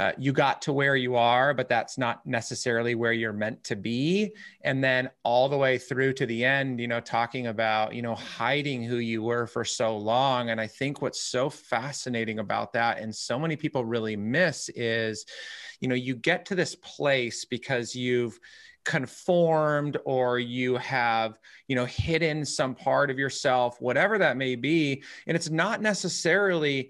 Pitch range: 125-170 Hz